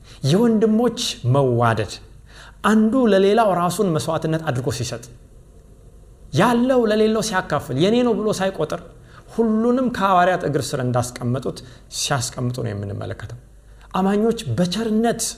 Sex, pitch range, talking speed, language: male, 115-185 Hz, 100 wpm, Amharic